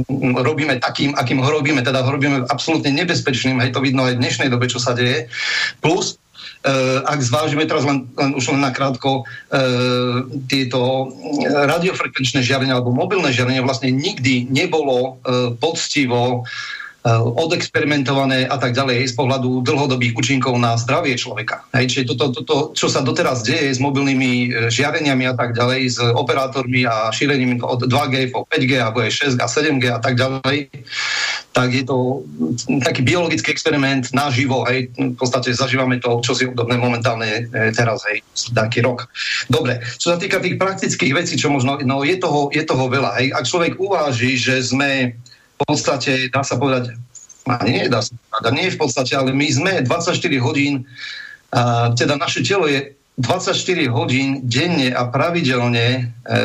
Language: Slovak